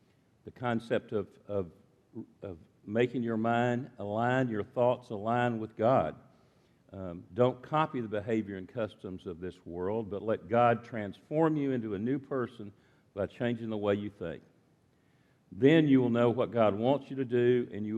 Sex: male